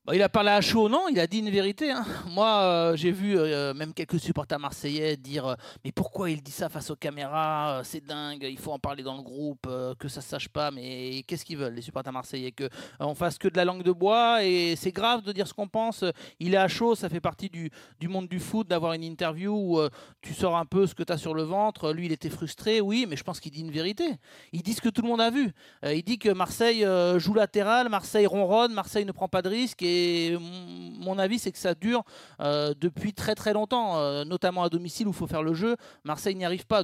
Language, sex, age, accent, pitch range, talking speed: French, male, 30-49, French, 150-200 Hz, 265 wpm